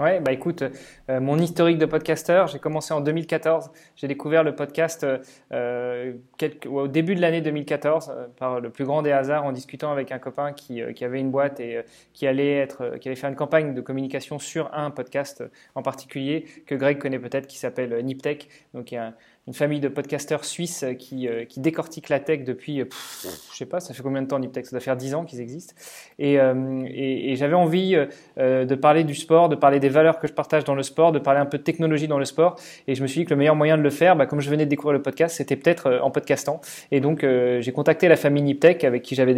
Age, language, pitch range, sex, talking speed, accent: 20-39, French, 135-155 Hz, male, 250 wpm, French